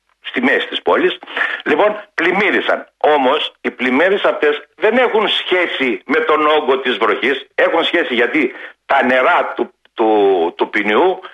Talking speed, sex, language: 145 wpm, male, Greek